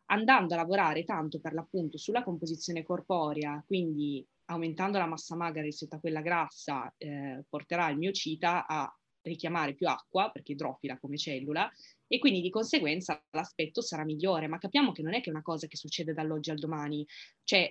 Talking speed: 175 wpm